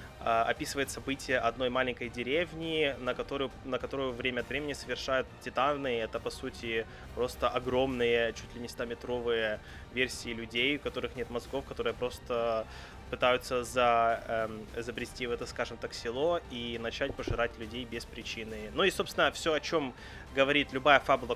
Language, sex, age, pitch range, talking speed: Russian, male, 20-39, 115-140 Hz, 155 wpm